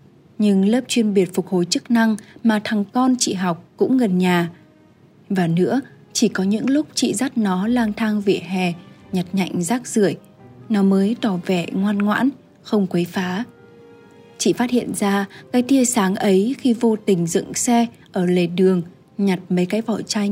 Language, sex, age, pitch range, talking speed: Vietnamese, female, 20-39, 185-235 Hz, 185 wpm